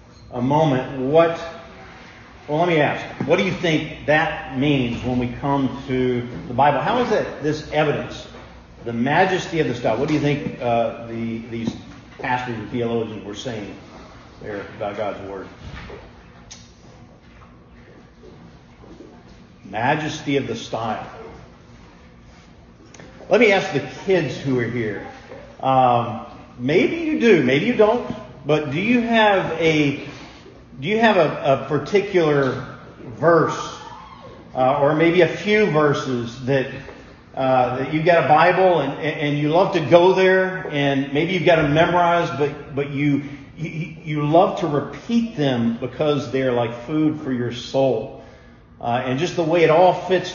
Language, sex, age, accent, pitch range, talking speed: English, male, 40-59, American, 120-160 Hz, 150 wpm